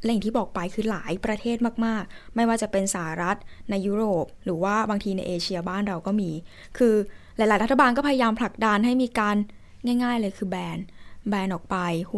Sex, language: female, Thai